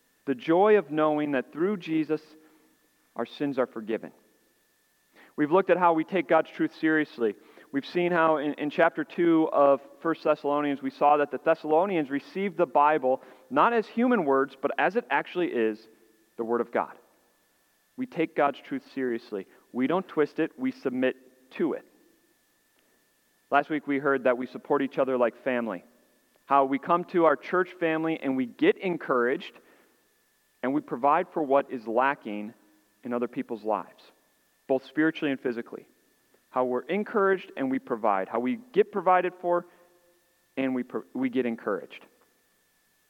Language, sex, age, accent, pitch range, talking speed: English, male, 40-59, American, 130-175 Hz, 165 wpm